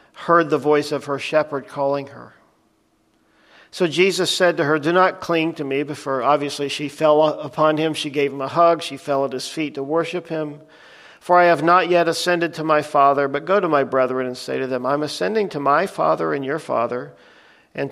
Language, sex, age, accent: English, male, 50-69, American